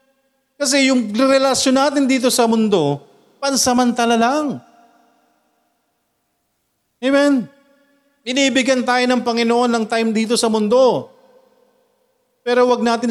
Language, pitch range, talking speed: Filipino, 140-225 Hz, 100 wpm